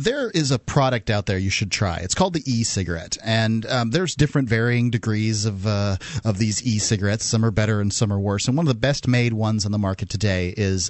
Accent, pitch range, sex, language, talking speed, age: American, 105-140 Hz, male, English, 225 wpm, 30-49